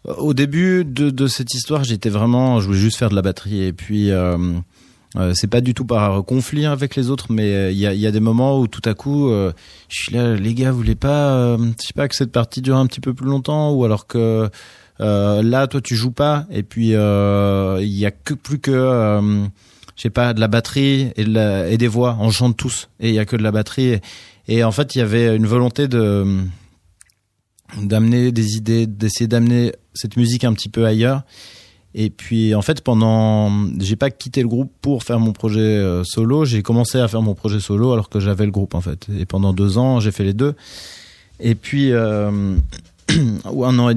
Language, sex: French, male